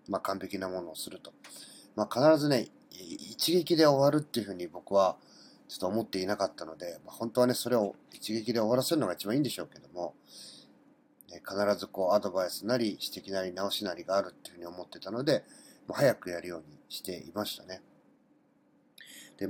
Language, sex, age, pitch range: Japanese, male, 40-59, 95-155 Hz